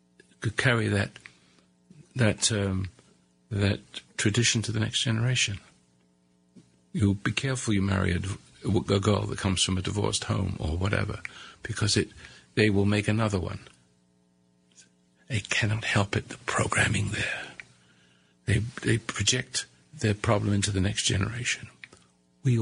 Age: 50-69